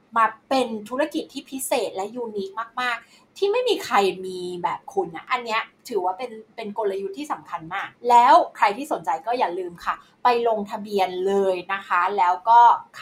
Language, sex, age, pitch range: Thai, female, 20-39, 190-245 Hz